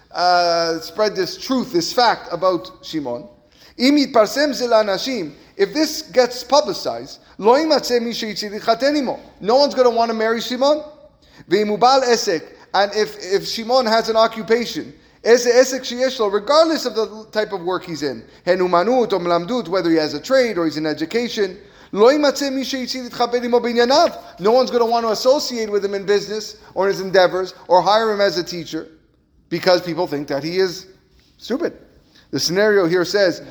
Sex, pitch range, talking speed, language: male, 180-240 Hz, 135 wpm, English